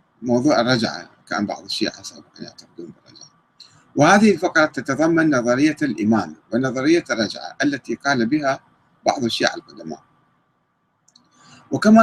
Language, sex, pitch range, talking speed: Arabic, male, 115-160 Hz, 105 wpm